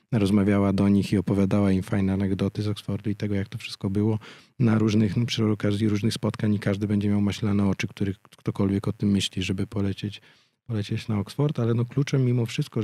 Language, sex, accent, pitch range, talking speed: Polish, male, native, 100-115 Hz, 205 wpm